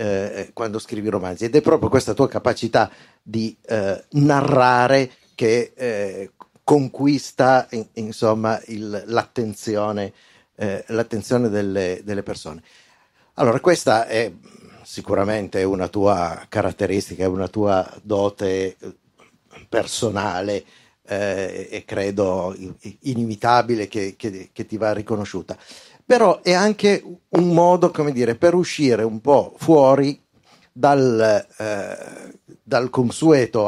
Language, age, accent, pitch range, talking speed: Italian, 50-69, native, 105-130 Hz, 110 wpm